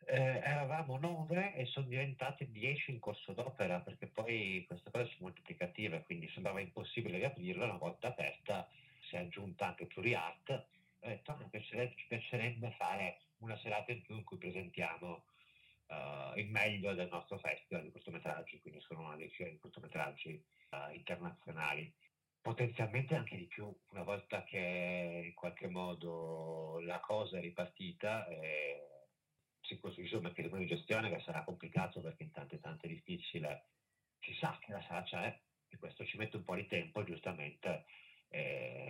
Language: Italian